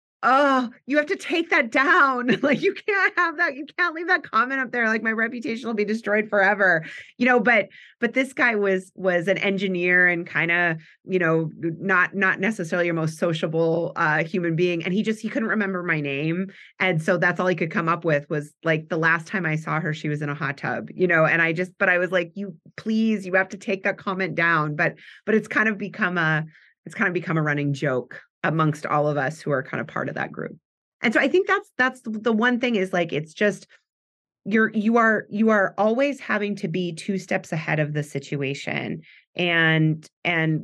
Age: 30-49